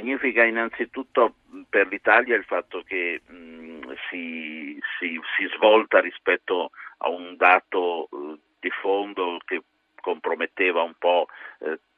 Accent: native